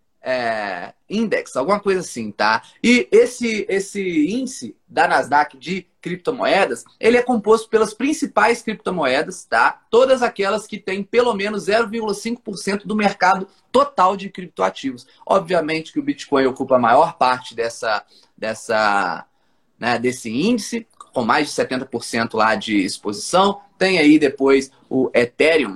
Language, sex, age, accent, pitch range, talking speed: Portuguese, male, 20-39, Brazilian, 135-220 Hz, 135 wpm